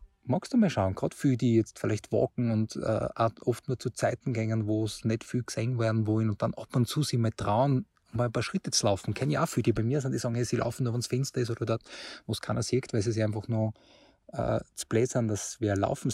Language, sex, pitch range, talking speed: German, male, 100-120 Hz, 275 wpm